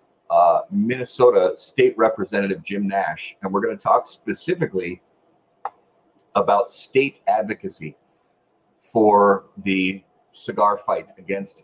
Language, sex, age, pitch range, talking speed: English, male, 40-59, 95-125 Hz, 105 wpm